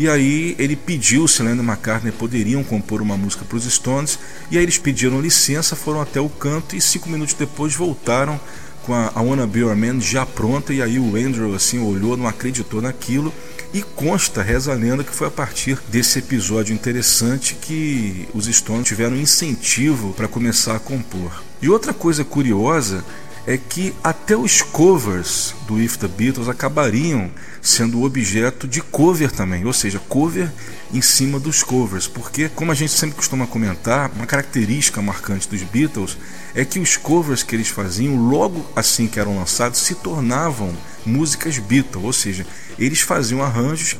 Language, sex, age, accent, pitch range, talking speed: Portuguese, male, 40-59, Brazilian, 110-145 Hz, 170 wpm